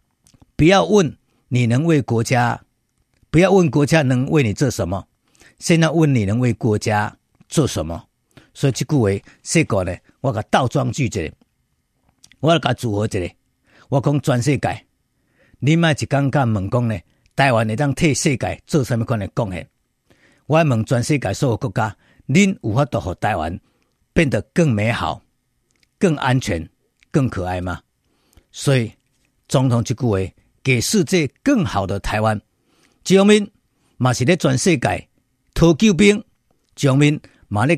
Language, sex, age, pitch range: Chinese, male, 50-69, 110-155 Hz